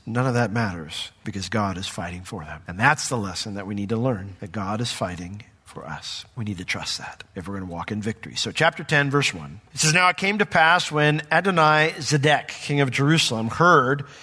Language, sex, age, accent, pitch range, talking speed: English, male, 40-59, American, 120-155 Hz, 230 wpm